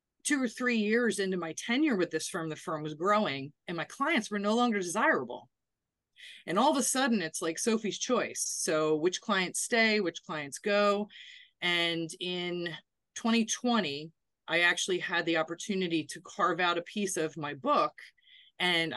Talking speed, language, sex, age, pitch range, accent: 170 wpm, English, female, 30-49, 165-220 Hz, American